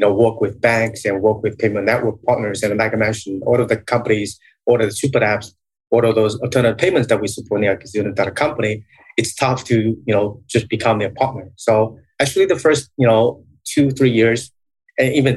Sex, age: male, 30-49